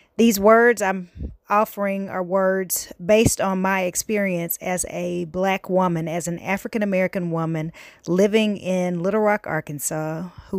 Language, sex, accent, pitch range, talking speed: English, female, American, 170-200 Hz, 135 wpm